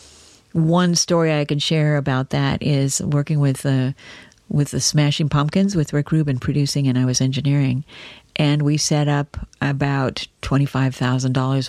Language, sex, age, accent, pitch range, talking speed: English, female, 40-59, American, 130-145 Hz, 170 wpm